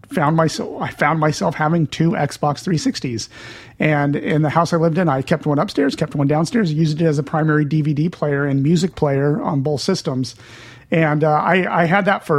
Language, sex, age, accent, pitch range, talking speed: English, male, 40-59, American, 140-165 Hz, 210 wpm